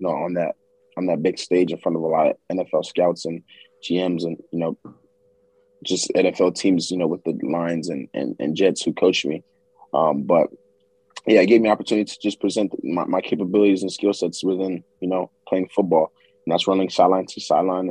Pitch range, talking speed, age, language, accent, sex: 90-100 Hz, 215 wpm, 20-39, English, American, male